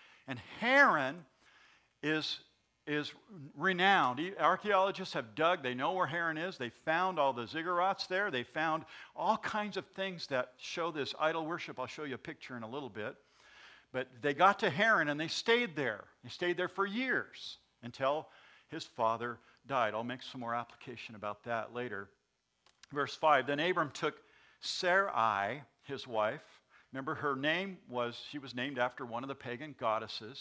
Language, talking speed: English, 170 wpm